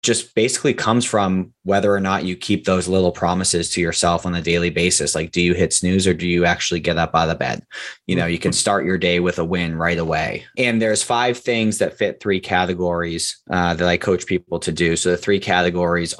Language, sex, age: English, male, 20-39